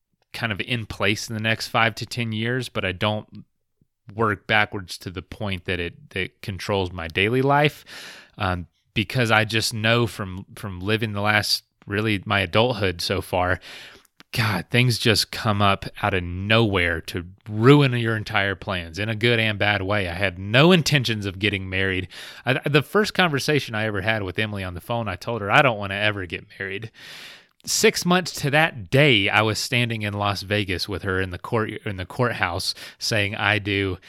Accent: American